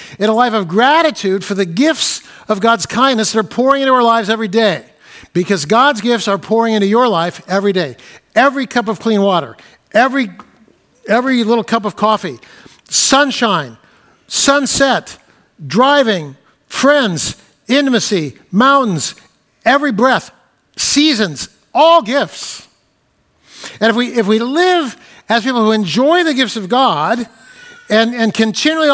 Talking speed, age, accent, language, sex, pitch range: 140 wpm, 60-79, American, English, male, 215-275 Hz